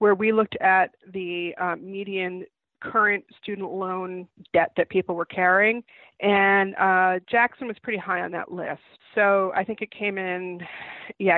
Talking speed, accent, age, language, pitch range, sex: 165 wpm, American, 30-49, English, 180-205 Hz, female